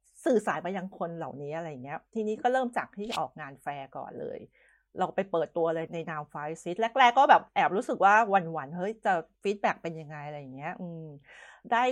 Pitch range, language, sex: 175-220 Hz, Thai, female